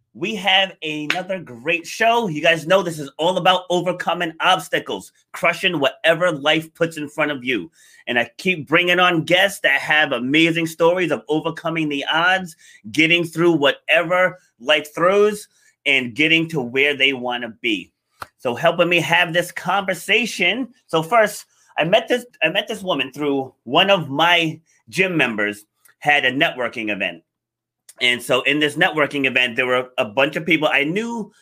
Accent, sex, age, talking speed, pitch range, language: American, male, 30-49, 165 wpm, 140-180 Hz, English